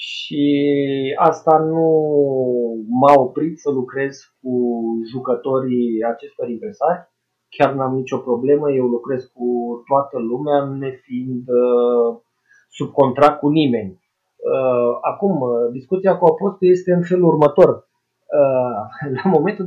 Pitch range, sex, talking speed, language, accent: 125-165 Hz, male, 120 wpm, Romanian, native